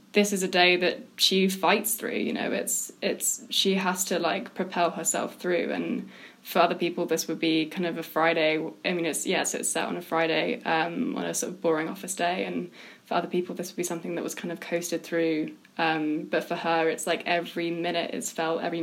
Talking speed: 230 wpm